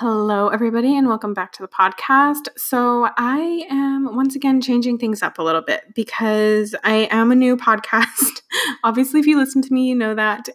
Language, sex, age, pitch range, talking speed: English, female, 20-39, 200-260 Hz, 195 wpm